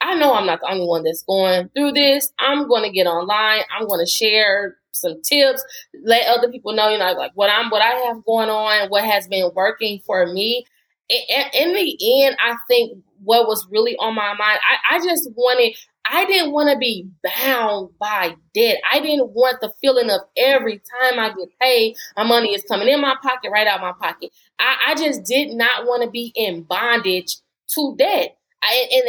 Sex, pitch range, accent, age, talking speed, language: female, 200-255 Hz, American, 20-39, 200 wpm, English